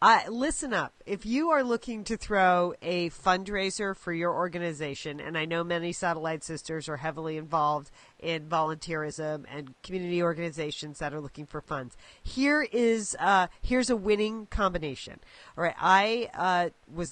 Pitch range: 160-195 Hz